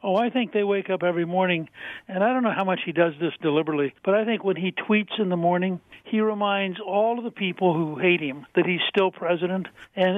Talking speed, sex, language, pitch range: 240 wpm, male, English, 165-195 Hz